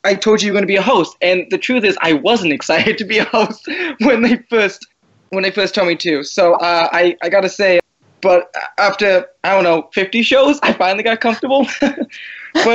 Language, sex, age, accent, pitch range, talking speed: English, male, 20-39, American, 165-205 Hz, 225 wpm